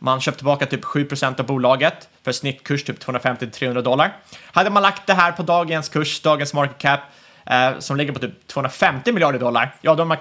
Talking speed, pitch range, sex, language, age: 205 wpm, 130-165 Hz, male, Swedish, 30-49